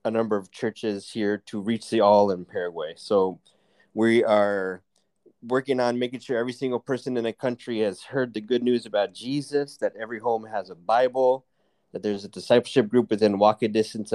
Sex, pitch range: male, 100-125 Hz